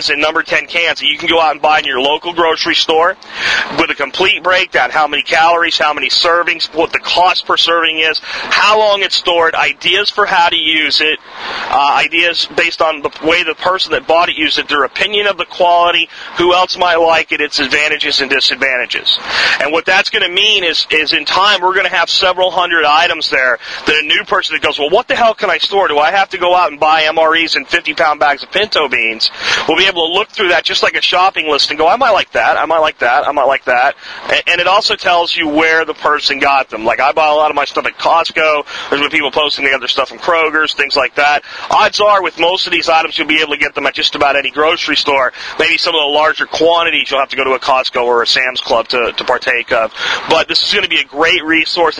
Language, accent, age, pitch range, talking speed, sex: English, American, 40-59, 145-175 Hz, 255 wpm, male